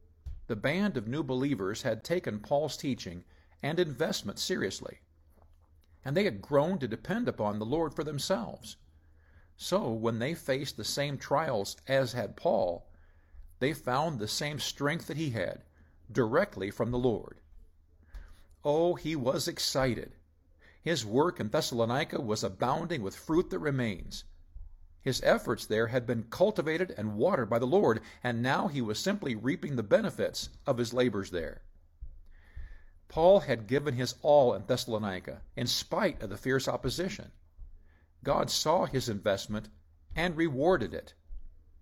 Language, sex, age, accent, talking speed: English, male, 50-69, American, 145 wpm